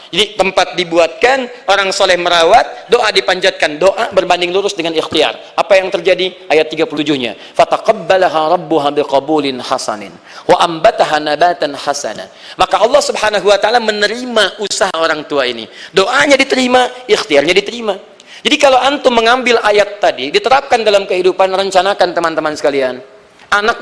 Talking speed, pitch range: 130 wpm, 180-230 Hz